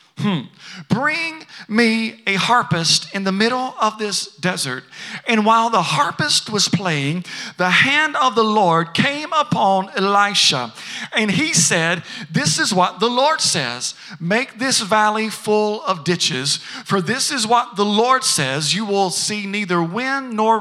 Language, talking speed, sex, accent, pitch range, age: English, 155 wpm, male, American, 180-245 Hz, 40-59